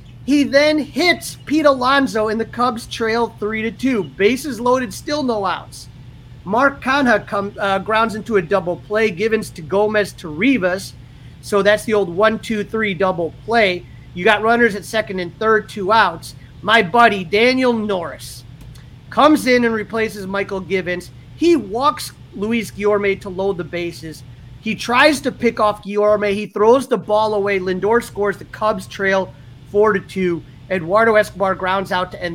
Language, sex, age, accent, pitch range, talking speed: English, male, 30-49, American, 175-225 Hz, 165 wpm